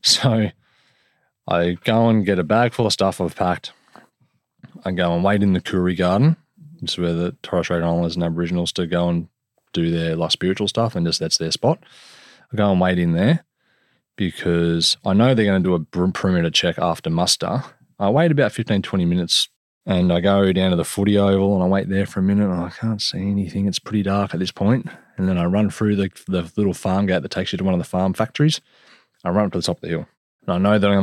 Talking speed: 240 wpm